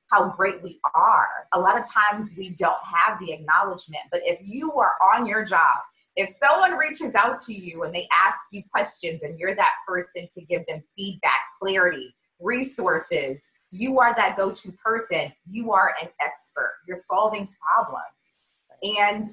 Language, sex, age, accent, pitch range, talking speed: English, female, 20-39, American, 180-230 Hz, 170 wpm